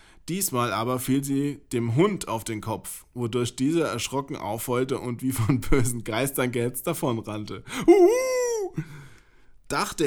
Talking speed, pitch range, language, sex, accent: 130 wpm, 110-150 Hz, German, male, German